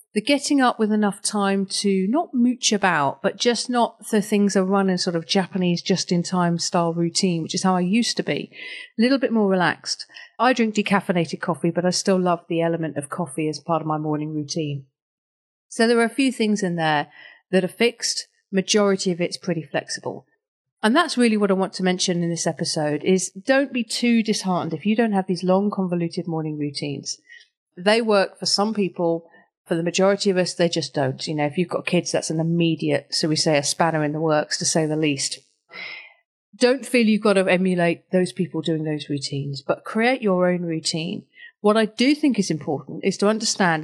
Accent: British